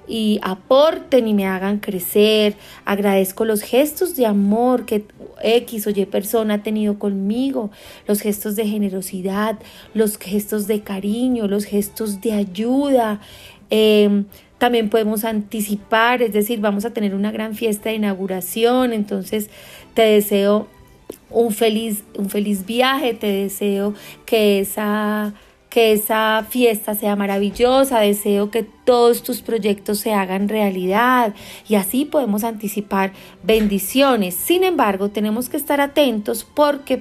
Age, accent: 30-49, Colombian